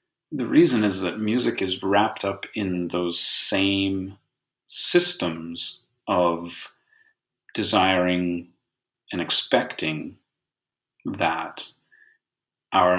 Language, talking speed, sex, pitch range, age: English, 85 wpm, male, 85-110 Hz, 30-49